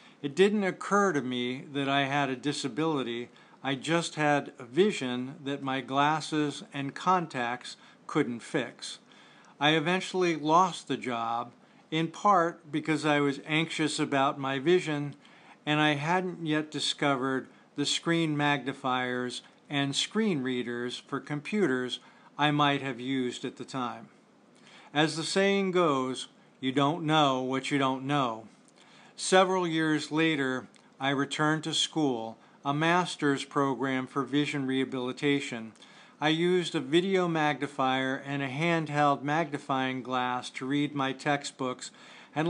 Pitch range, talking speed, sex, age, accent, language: 135-165 Hz, 135 wpm, male, 50-69, American, English